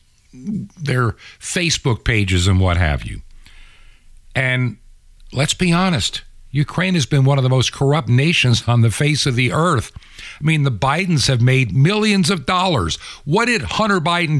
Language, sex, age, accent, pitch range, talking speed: English, male, 50-69, American, 105-140 Hz, 165 wpm